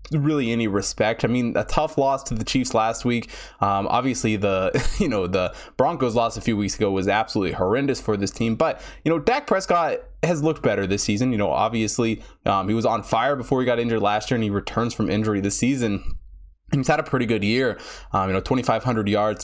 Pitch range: 105-135 Hz